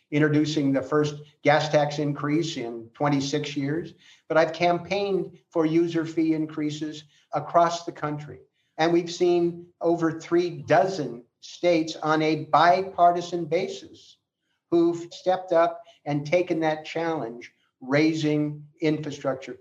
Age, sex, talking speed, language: 50-69, male, 120 wpm, English